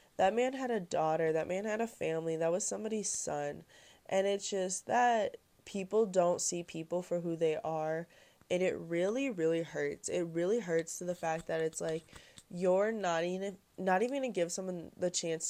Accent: American